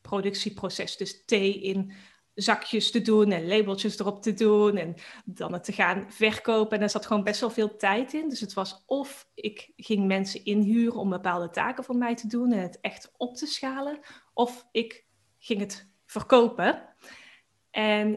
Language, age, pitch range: Dutch, 20-39, 200-235 Hz